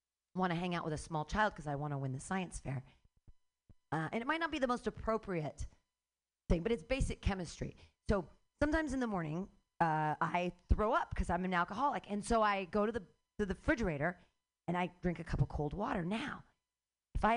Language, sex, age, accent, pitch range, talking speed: English, female, 40-59, American, 140-215 Hz, 220 wpm